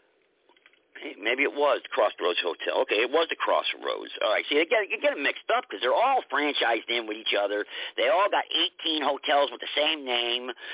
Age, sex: 50-69, male